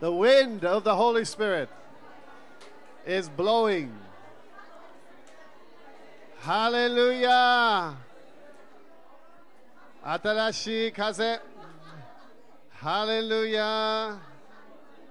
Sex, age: male, 40-59